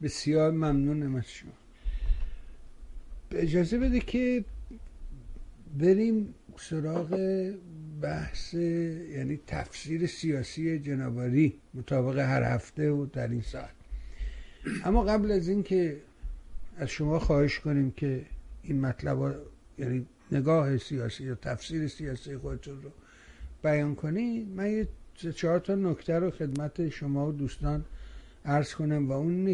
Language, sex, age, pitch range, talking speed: Persian, male, 60-79, 130-160 Hz, 115 wpm